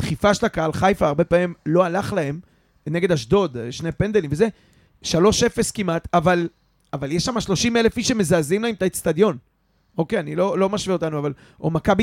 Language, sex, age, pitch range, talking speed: Hebrew, male, 30-49, 165-220 Hz, 180 wpm